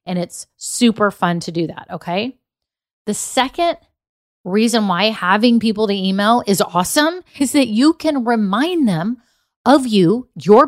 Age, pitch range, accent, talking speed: 30-49, 180-240 Hz, American, 150 wpm